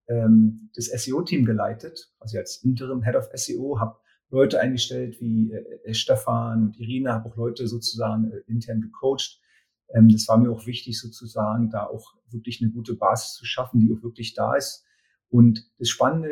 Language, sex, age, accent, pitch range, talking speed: German, male, 40-59, German, 110-125 Hz, 160 wpm